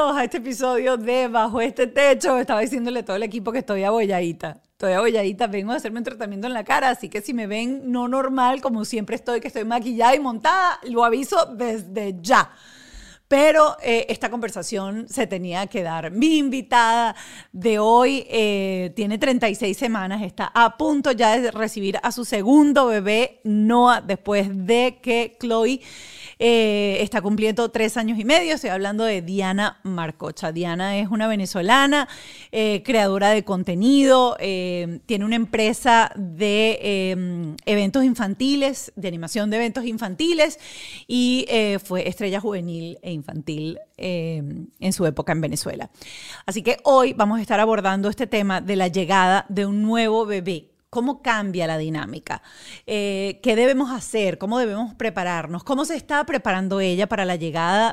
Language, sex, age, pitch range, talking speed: Spanish, female, 40-59, 195-245 Hz, 165 wpm